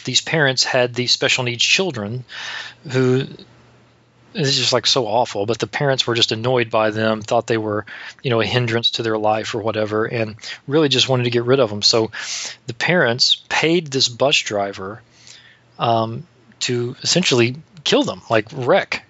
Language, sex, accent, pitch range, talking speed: English, male, American, 115-130 Hz, 180 wpm